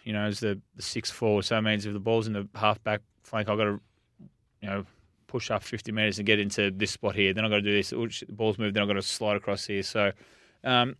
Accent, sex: Australian, male